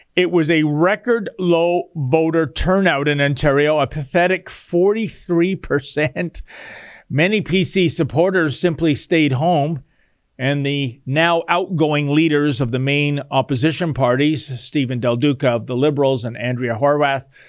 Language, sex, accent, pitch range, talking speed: English, male, American, 140-195 Hz, 125 wpm